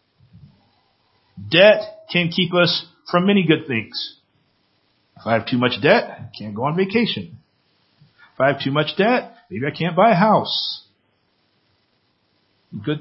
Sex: male